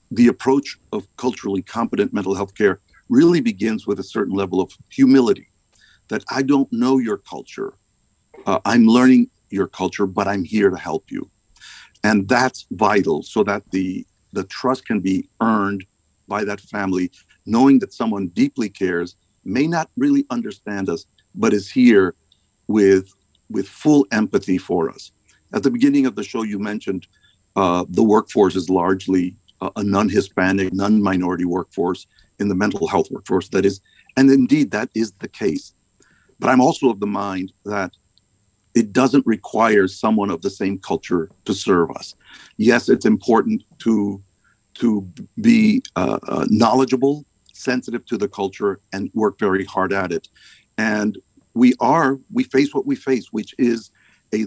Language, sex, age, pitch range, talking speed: English, male, 50-69, 95-130 Hz, 155 wpm